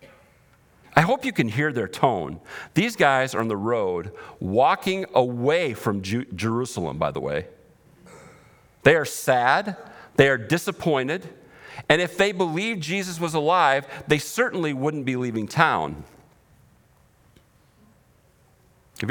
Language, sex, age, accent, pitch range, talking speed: English, male, 50-69, American, 105-155 Hz, 125 wpm